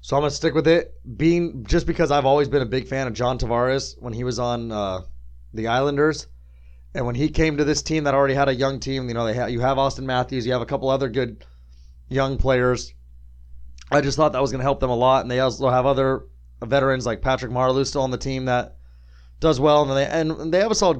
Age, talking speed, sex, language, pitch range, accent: 20-39, 250 wpm, male, English, 115-145 Hz, American